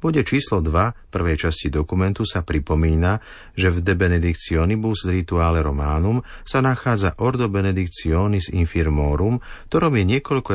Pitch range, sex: 80-115 Hz, male